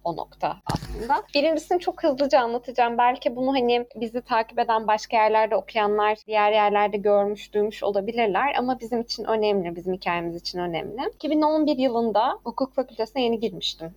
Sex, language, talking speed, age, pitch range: female, Turkish, 150 wpm, 20-39, 205-260 Hz